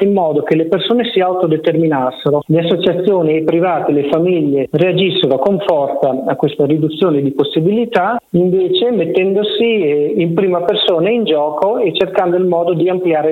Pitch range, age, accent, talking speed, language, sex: 140-175 Hz, 40-59, native, 155 wpm, Italian, male